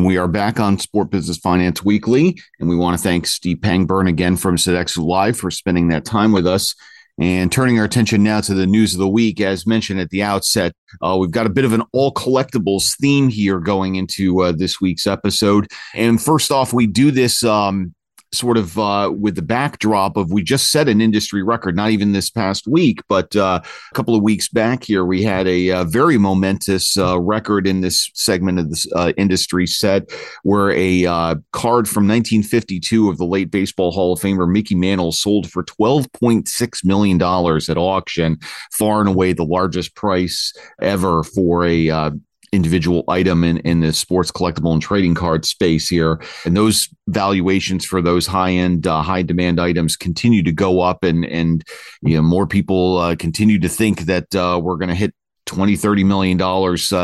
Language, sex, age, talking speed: English, male, 40-59, 195 wpm